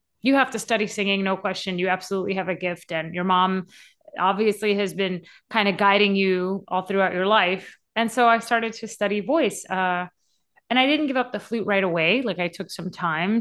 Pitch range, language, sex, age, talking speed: 180-220 Hz, English, female, 30-49, 215 wpm